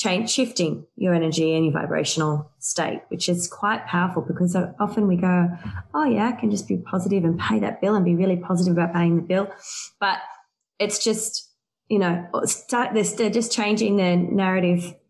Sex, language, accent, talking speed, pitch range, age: female, English, Australian, 185 wpm, 175-220 Hz, 20-39